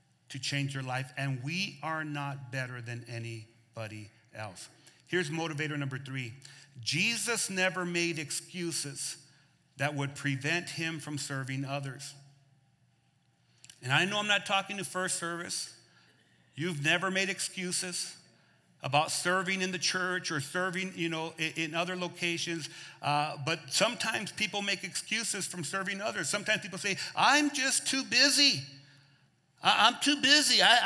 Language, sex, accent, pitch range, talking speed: English, male, American, 145-225 Hz, 140 wpm